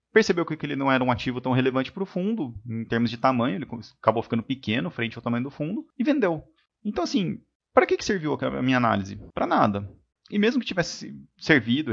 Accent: Brazilian